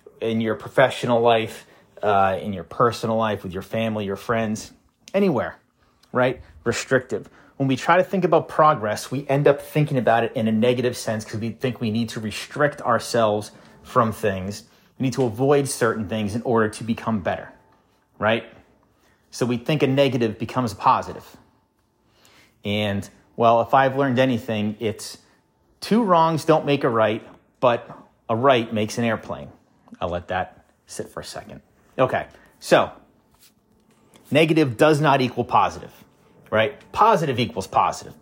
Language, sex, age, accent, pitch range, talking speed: English, male, 30-49, American, 110-135 Hz, 155 wpm